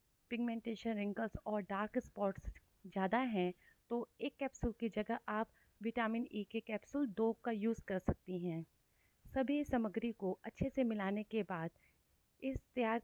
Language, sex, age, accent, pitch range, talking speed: Hindi, female, 30-49, native, 200-240 Hz, 155 wpm